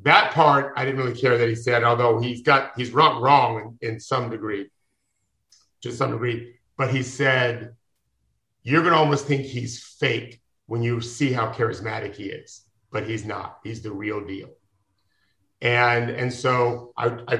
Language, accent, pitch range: English, American, 115-135 Hz